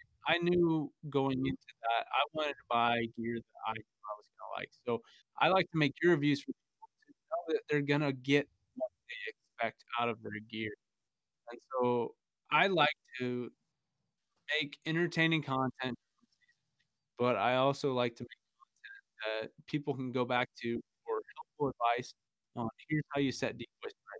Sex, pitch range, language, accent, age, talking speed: male, 120-155 Hz, English, American, 20-39, 175 wpm